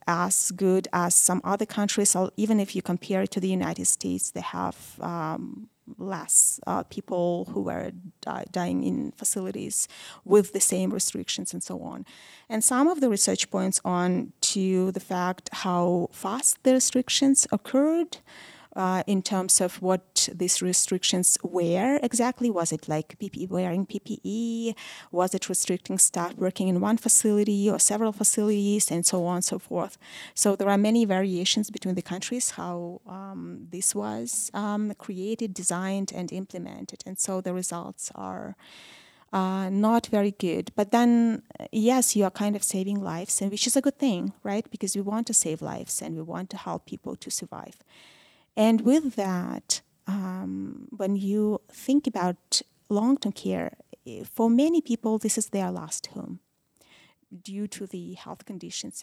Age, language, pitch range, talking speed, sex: 30-49, English, 180-220 Hz, 160 wpm, female